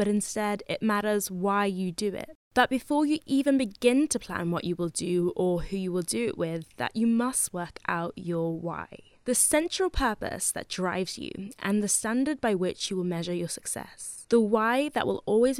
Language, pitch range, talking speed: English, 180-255 Hz, 210 wpm